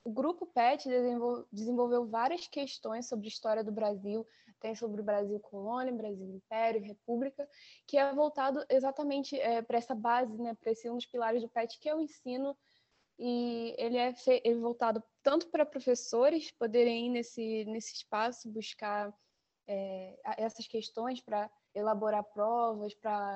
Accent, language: Brazilian, Portuguese